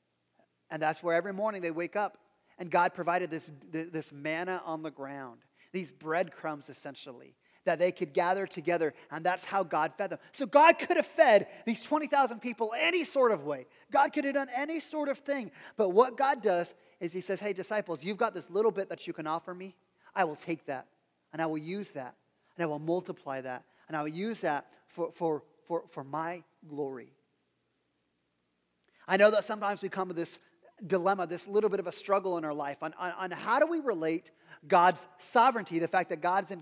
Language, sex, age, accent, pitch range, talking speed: English, male, 30-49, American, 160-215 Hz, 210 wpm